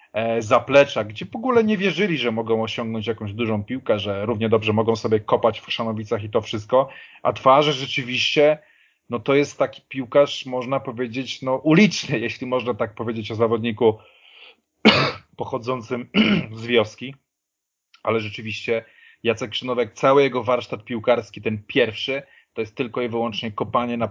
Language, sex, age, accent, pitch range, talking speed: Polish, male, 30-49, native, 115-130 Hz, 150 wpm